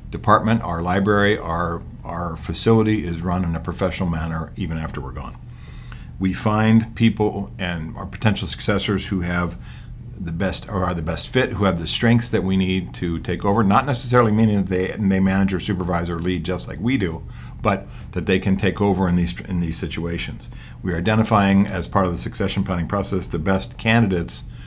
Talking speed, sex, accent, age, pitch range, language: 195 wpm, male, American, 50-69, 85-100 Hz, English